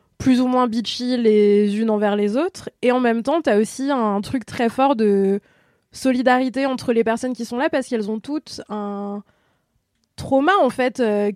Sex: female